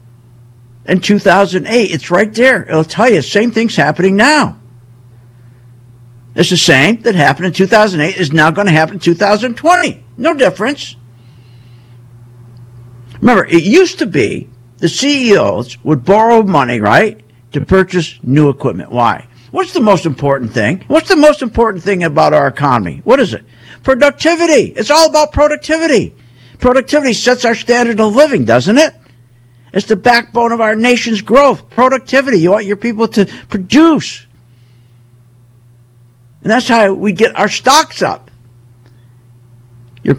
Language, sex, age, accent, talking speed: English, male, 60-79, American, 145 wpm